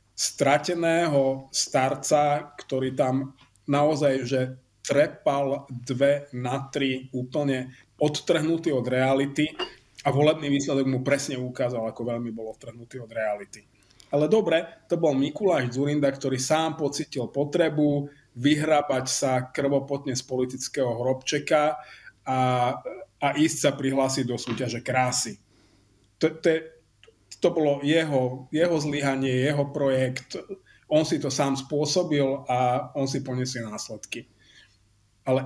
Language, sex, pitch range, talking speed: Slovak, male, 125-150 Hz, 115 wpm